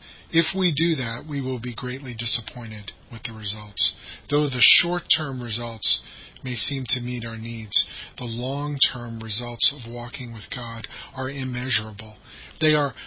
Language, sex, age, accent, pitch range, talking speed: English, male, 40-59, American, 115-145 Hz, 150 wpm